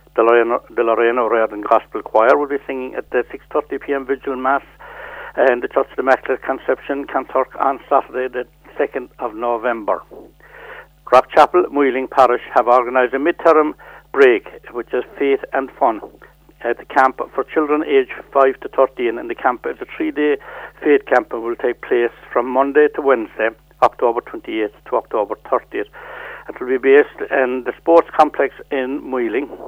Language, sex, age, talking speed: English, male, 70-89, 160 wpm